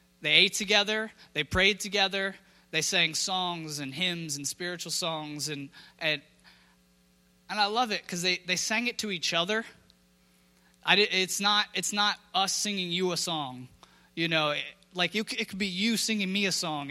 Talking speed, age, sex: 180 wpm, 30-49, male